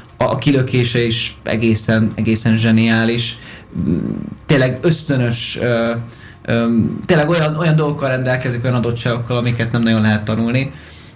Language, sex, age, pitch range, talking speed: Hungarian, male, 20-39, 115-150 Hz, 120 wpm